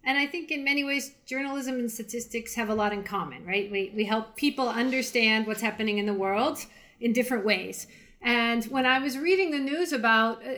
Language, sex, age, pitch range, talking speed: English, female, 40-59, 205-275 Hz, 205 wpm